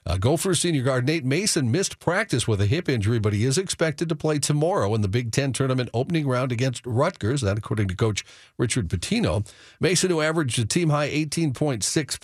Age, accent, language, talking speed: 50-69, American, English, 195 wpm